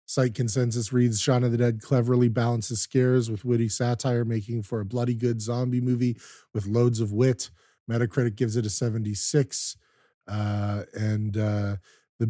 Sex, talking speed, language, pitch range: male, 160 wpm, English, 115-125 Hz